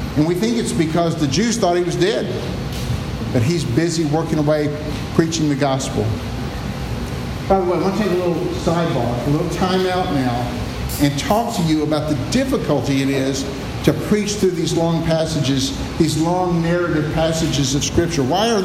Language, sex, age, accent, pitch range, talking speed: English, male, 50-69, American, 155-190 Hz, 185 wpm